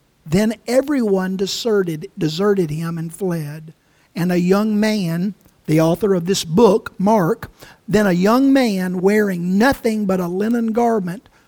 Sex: male